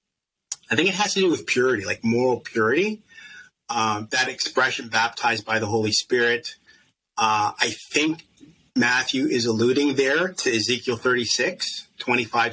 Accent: American